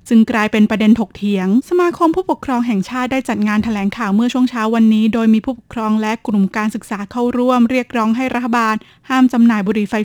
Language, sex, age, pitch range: Thai, female, 20-39, 215-245 Hz